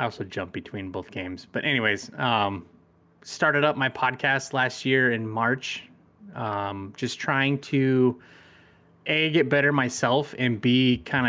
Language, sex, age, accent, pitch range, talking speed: English, male, 30-49, American, 105-130 Hz, 150 wpm